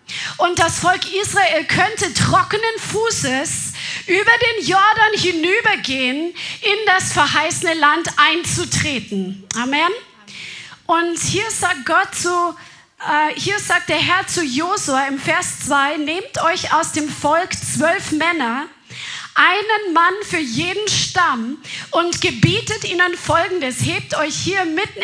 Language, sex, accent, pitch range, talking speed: German, female, German, 295-375 Hz, 120 wpm